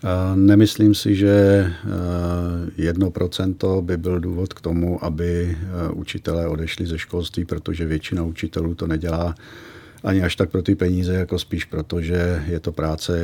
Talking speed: 150 wpm